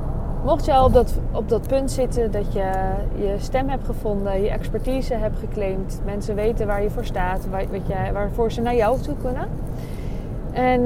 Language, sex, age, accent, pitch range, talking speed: Dutch, female, 20-39, Dutch, 185-240 Hz, 190 wpm